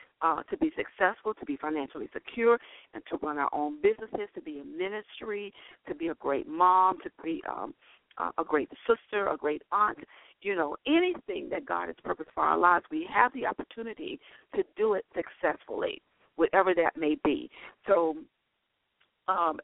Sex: female